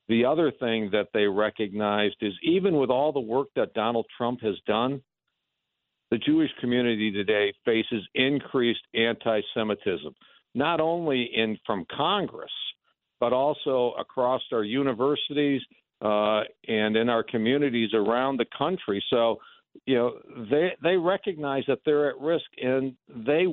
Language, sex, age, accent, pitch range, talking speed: English, male, 60-79, American, 120-160 Hz, 140 wpm